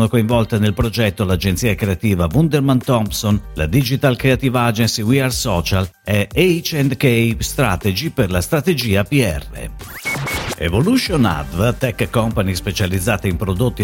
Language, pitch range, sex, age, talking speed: Italian, 95-135 Hz, male, 50-69, 120 wpm